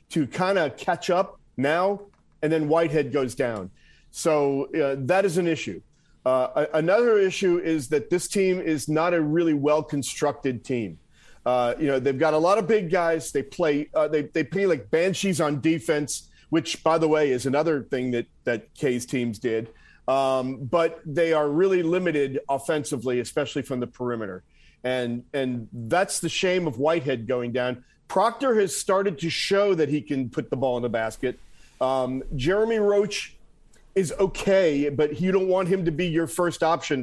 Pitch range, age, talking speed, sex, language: 130-180 Hz, 40-59, 185 wpm, male, English